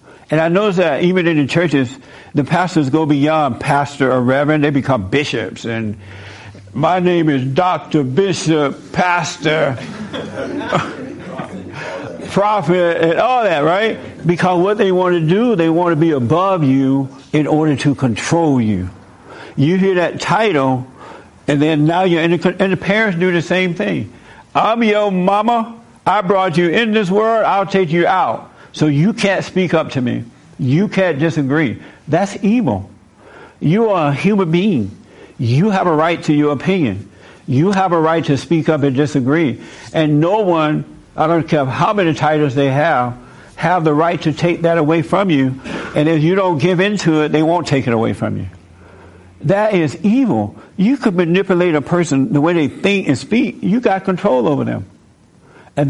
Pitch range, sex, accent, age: 140-185 Hz, male, American, 60-79